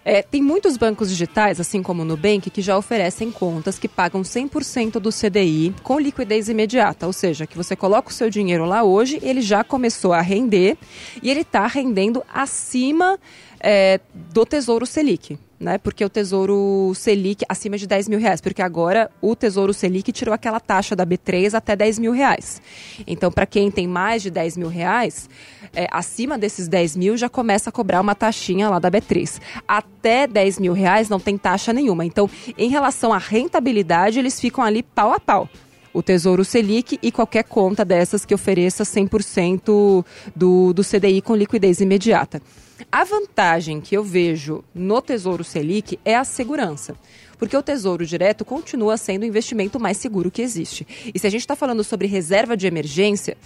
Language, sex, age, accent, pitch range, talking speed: Portuguese, female, 20-39, Brazilian, 185-230 Hz, 180 wpm